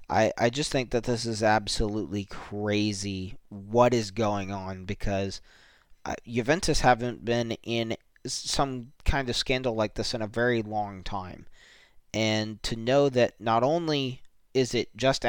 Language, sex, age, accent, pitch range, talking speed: English, male, 20-39, American, 105-130 Hz, 155 wpm